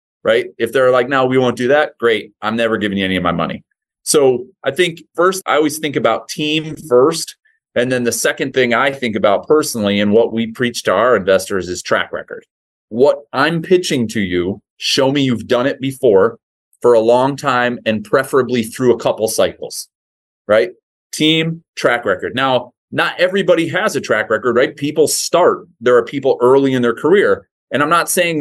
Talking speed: 195 wpm